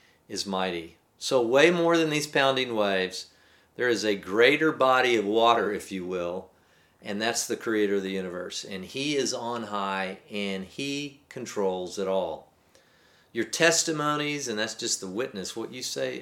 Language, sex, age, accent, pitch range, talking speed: English, male, 40-59, American, 105-150 Hz, 170 wpm